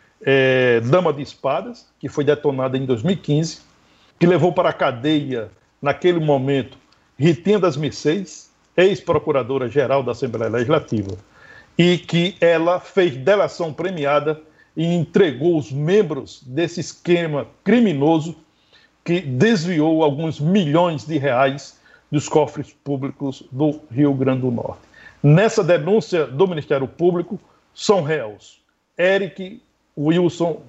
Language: Portuguese